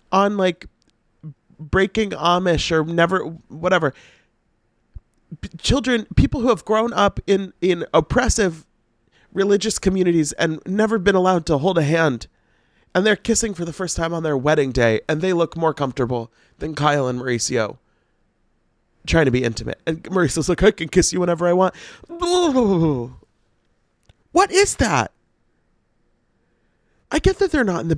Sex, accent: male, American